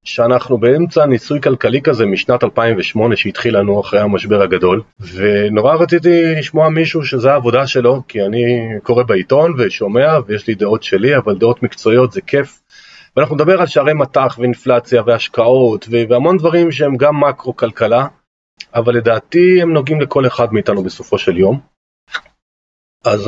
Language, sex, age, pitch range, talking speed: Hebrew, male, 40-59, 115-150 Hz, 145 wpm